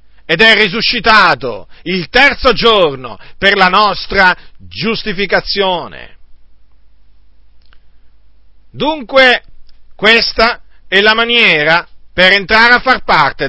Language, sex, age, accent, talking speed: Italian, male, 50-69, native, 90 wpm